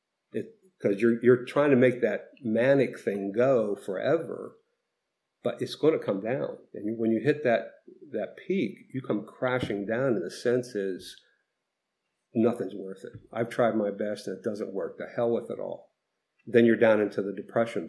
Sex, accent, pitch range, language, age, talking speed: male, American, 110-150 Hz, English, 50-69, 180 wpm